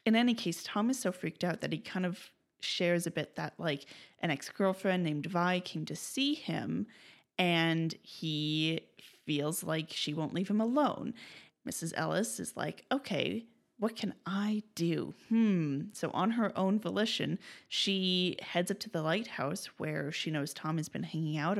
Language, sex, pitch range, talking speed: English, female, 165-225 Hz, 175 wpm